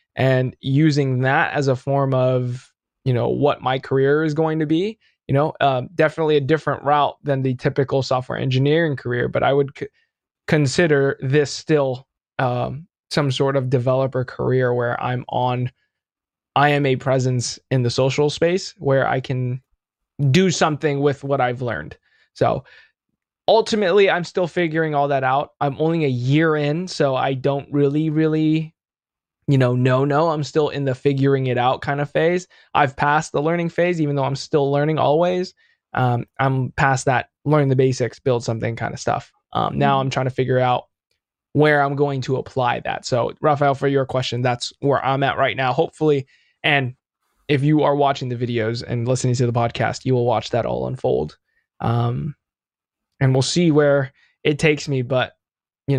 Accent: American